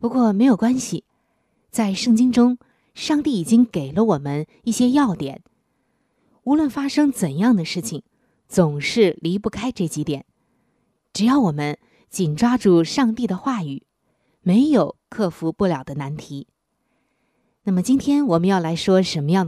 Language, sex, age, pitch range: Chinese, female, 20-39, 170-240 Hz